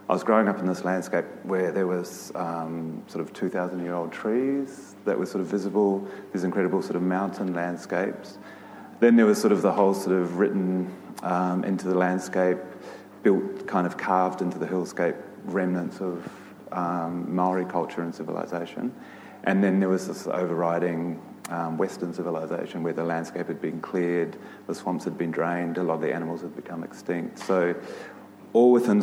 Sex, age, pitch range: male, 30-49, 85-95 Hz